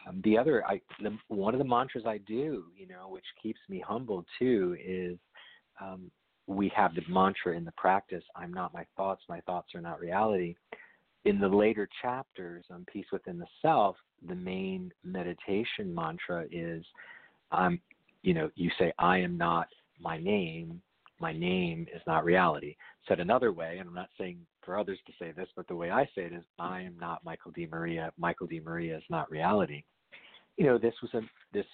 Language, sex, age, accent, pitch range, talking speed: English, male, 40-59, American, 90-125 Hz, 185 wpm